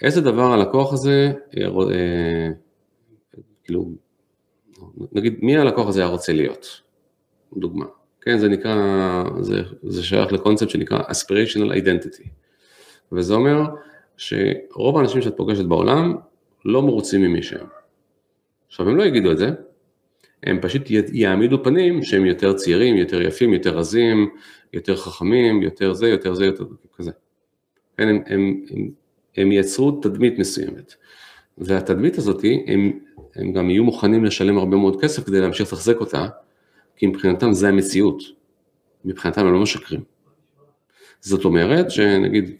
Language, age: Hebrew, 40-59